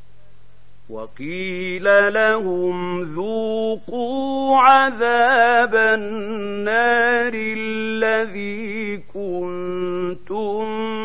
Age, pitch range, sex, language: 50-69, 180-250 Hz, male, Arabic